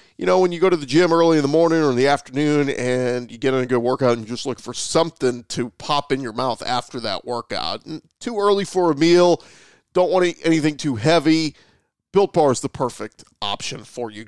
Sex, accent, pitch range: male, American, 125-150 Hz